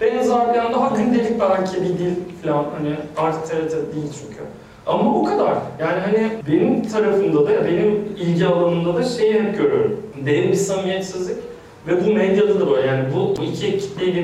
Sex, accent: male, native